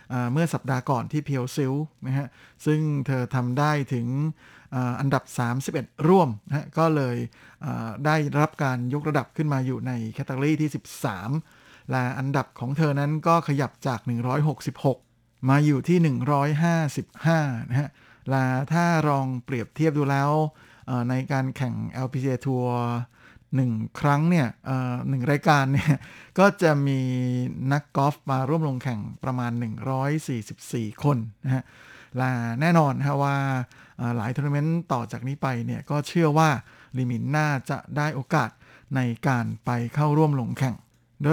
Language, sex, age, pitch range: Thai, male, 60-79, 125-150 Hz